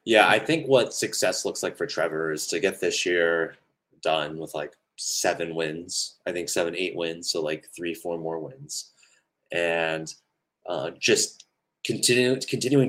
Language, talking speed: English, 165 wpm